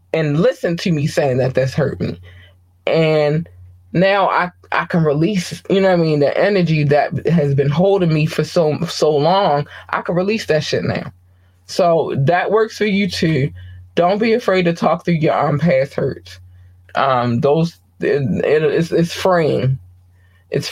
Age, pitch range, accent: 20-39, 120-180 Hz, American